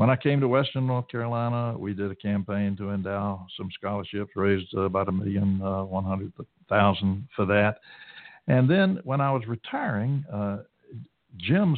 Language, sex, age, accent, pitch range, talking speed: English, male, 60-79, American, 100-125 Hz, 165 wpm